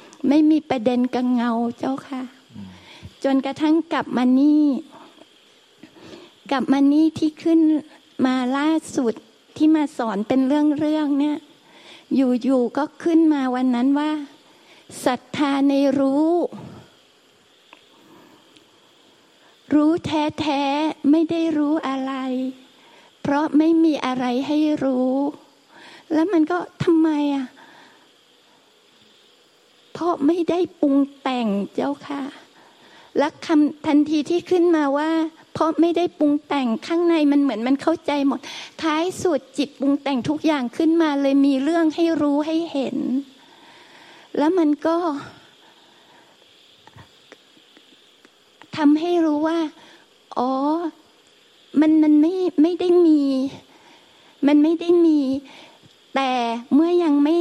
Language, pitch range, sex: Thai, 275-315 Hz, female